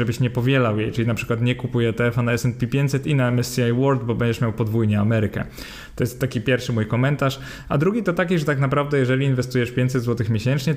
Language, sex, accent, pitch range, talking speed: Polish, male, native, 115-135 Hz, 225 wpm